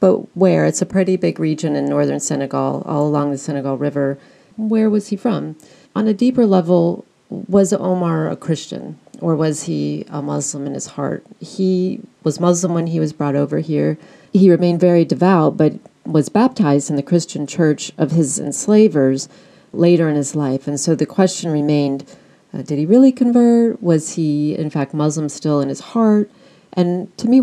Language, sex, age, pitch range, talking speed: English, female, 40-59, 145-180 Hz, 185 wpm